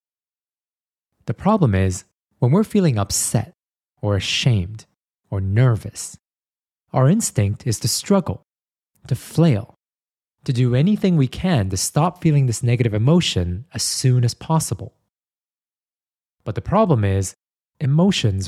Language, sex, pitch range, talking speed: English, male, 100-150 Hz, 125 wpm